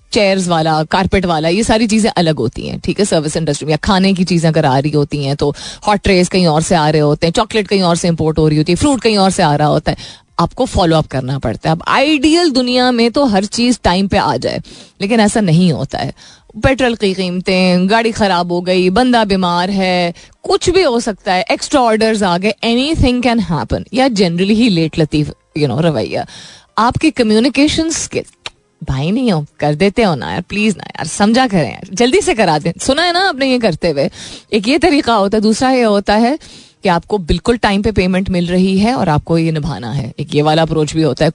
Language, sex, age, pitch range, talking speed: Hindi, female, 30-49, 165-230 Hz, 230 wpm